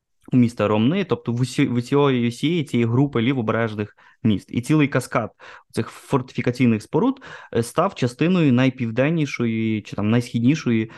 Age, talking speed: 20-39, 120 wpm